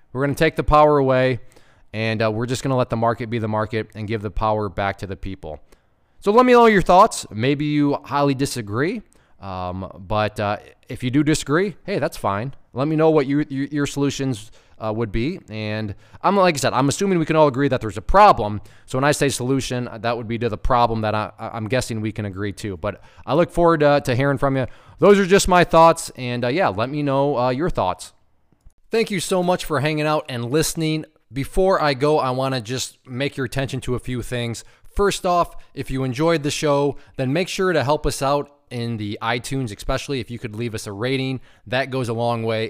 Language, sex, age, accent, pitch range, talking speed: English, male, 20-39, American, 115-150 Hz, 230 wpm